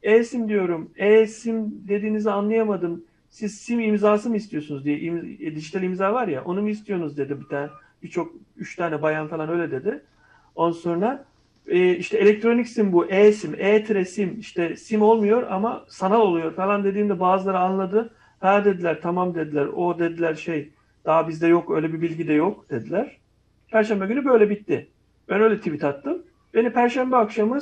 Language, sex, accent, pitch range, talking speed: Turkish, male, native, 155-205 Hz, 165 wpm